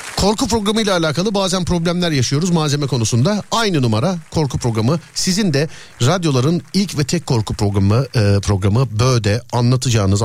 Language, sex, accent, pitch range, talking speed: Turkish, male, native, 95-135 Hz, 135 wpm